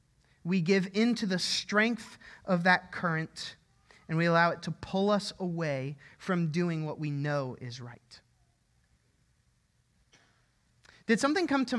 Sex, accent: male, American